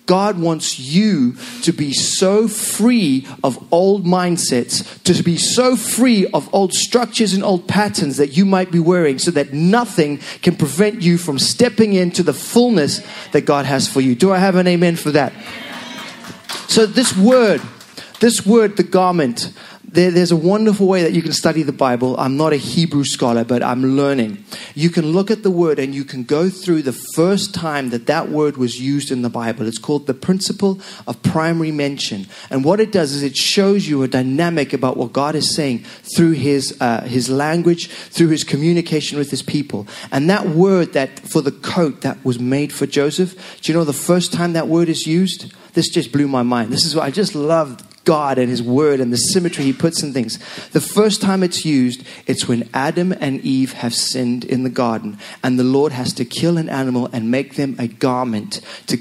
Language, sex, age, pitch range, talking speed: English, male, 30-49, 135-185 Hz, 205 wpm